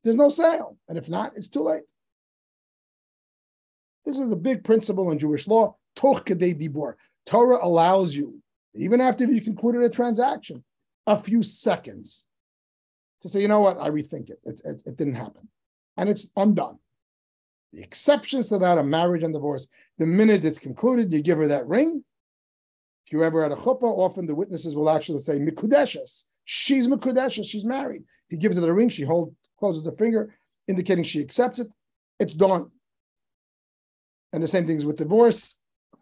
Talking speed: 170 wpm